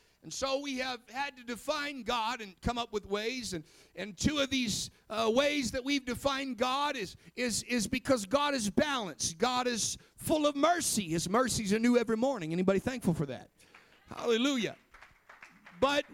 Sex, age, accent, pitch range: male, 50-69, American, 215-265 Hz